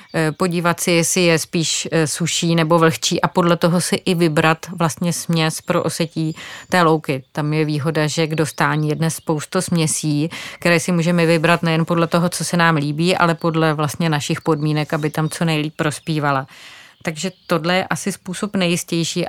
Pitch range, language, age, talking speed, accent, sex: 165-180 Hz, Czech, 30-49, 175 wpm, native, female